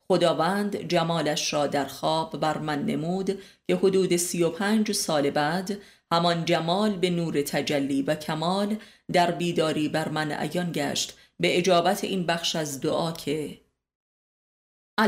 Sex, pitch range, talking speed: female, 155-190 Hz, 140 wpm